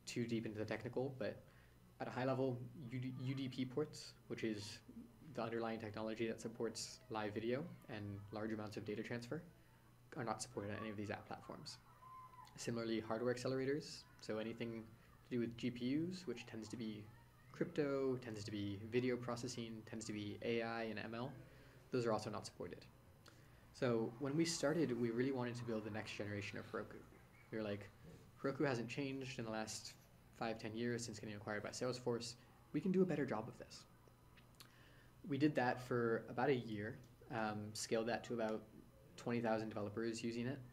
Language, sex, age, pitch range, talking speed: English, male, 20-39, 110-125 Hz, 180 wpm